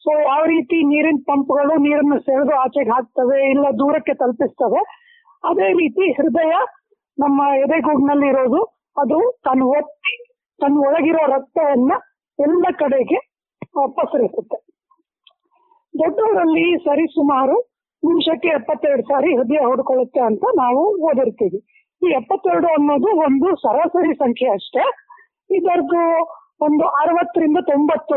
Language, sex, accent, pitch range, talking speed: Kannada, female, native, 275-345 Hz, 95 wpm